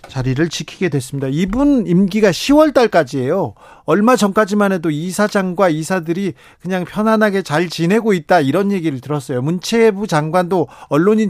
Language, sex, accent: Korean, male, native